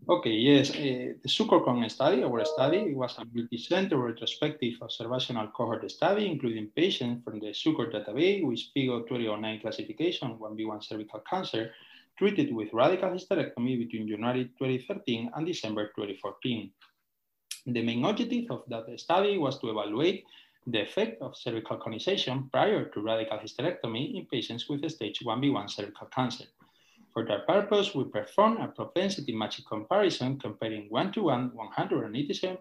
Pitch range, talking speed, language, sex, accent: 110-160 Hz, 145 wpm, English, male, Spanish